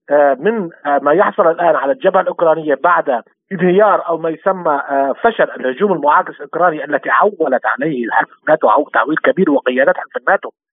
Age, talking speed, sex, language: 50-69, 145 wpm, male, Arabic